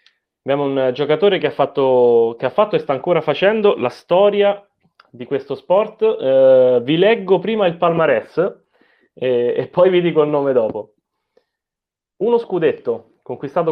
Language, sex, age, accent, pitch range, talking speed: Italian, male, 30-49, native, 125-180 Hz, 145 wpm